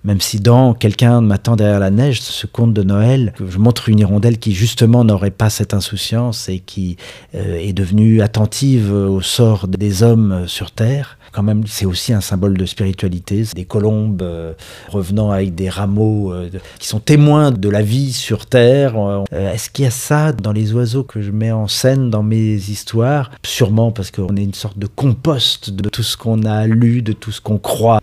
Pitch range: 105-125 Hz